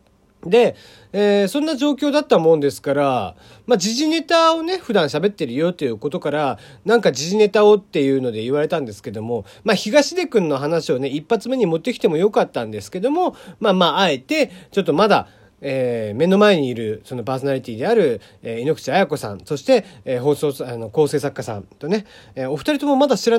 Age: 40-59